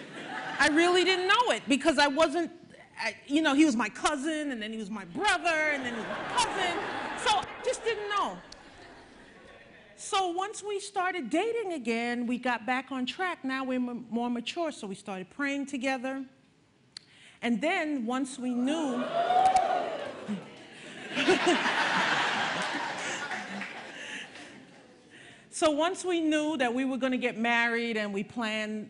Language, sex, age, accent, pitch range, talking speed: English, female, 40-59, American, 215-305 Hz, 145 wpm